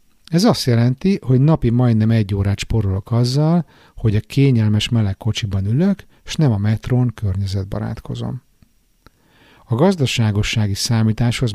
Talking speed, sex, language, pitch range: 125 wpm, male, Hungarian, 105-125 Hz